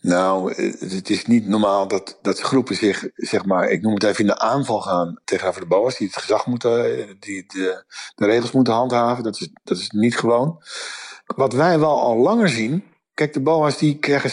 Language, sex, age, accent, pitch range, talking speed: Dutch, male, 50-69, Dutch, 115-150 Hz, 205 wpm